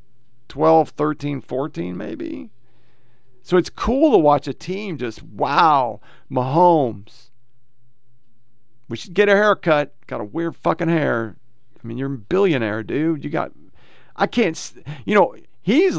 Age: 40-59